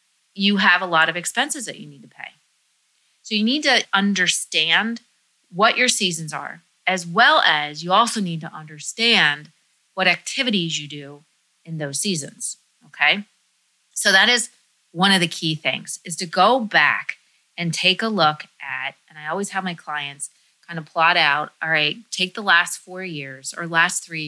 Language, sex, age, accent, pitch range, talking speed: English, female, 30-49, American, 155-205 Hz, 180 wpm